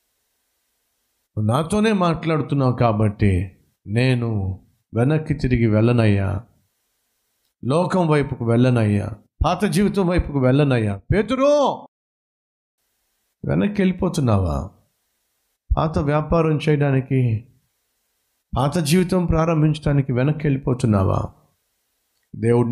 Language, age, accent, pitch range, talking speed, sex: Telugu, 50-69, native, 110-155 Hz, 70 wpm, male